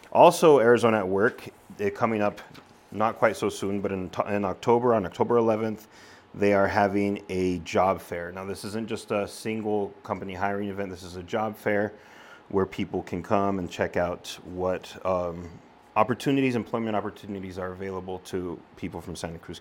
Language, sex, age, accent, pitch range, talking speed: English, male, 30-49, American, 95-115 Hz, 170 wpm